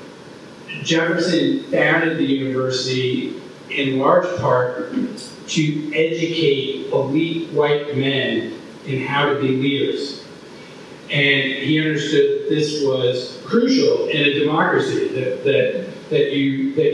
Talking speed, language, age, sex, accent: 100 wpm, English, 40-59, male, American